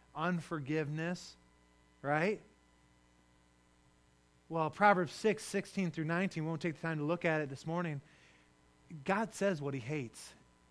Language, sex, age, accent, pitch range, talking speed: English, male, 30-49, American, 135-200 Hz, 135 wpm